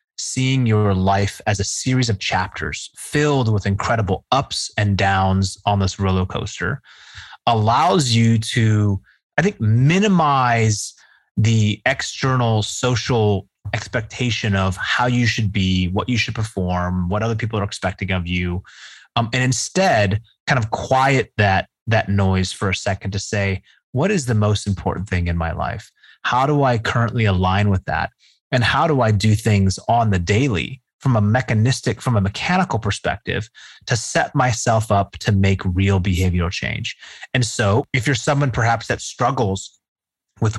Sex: male